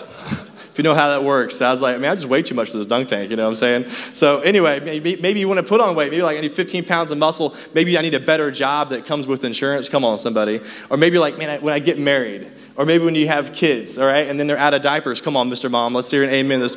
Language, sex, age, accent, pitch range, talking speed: English, male, 20-39, American, 115-155 Hz, 310 wpm